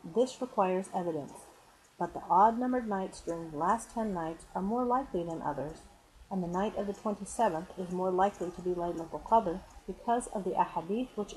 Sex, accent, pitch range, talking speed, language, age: female, American, 170-220 Hz, 190 wpm, English, 40-59